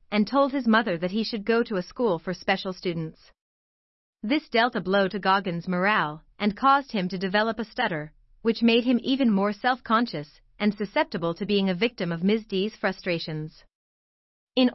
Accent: American